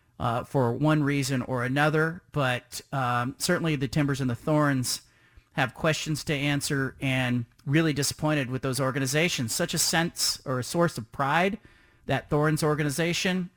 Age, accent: 40-59, American